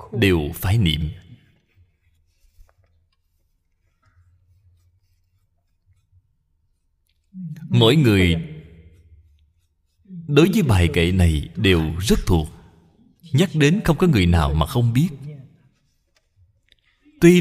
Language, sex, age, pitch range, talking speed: Vietnamese, male, 30-49, 90-145 Hz, 80 wpm